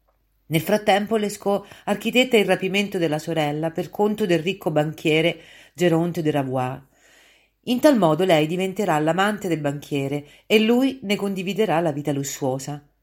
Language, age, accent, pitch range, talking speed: Italian, 40-59, native, 140-200 Hz, 145 wpm